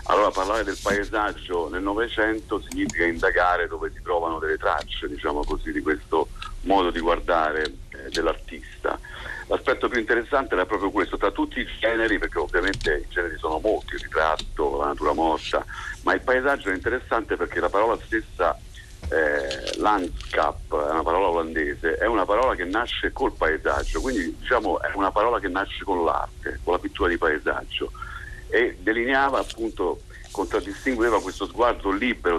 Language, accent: Italian, native